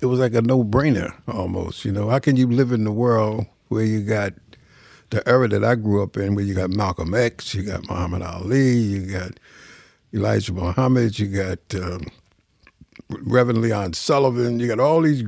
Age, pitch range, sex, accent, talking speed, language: 60-79, 105-130 Hz, male, American, 190 wpm, English